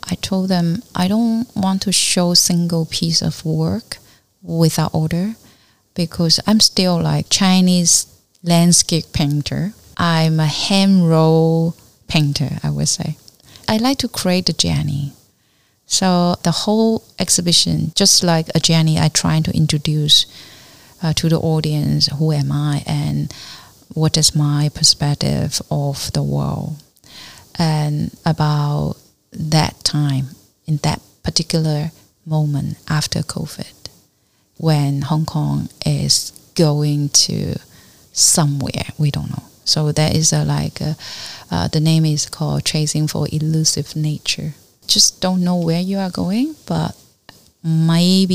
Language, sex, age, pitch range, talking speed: English, female, 30-49, 150-180 Hz, 130 wpm